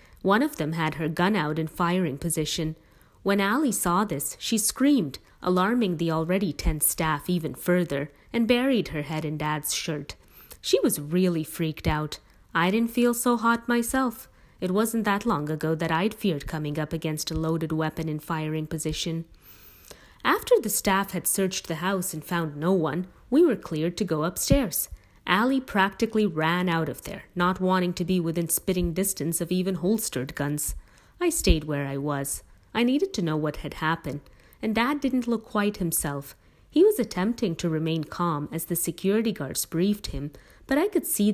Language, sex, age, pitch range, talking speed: English, female, 30-49, 155-210 Hz, 185 wpm